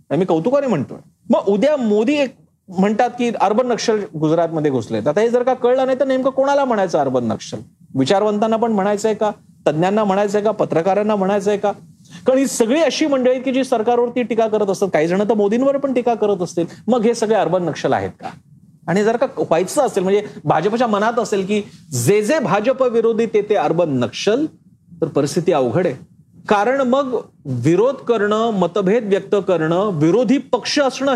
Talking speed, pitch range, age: 180 wpm, 170-230 Hz, 40-59